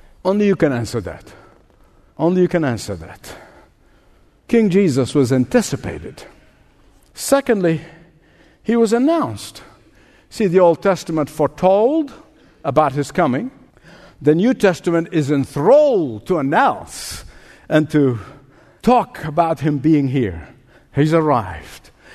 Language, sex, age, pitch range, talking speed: English, male, 60-79, 145-230 Hz, 115 wpm